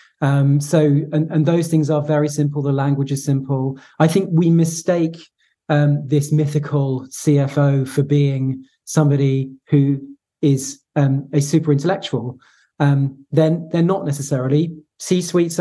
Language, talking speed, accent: English, 140 wpm, British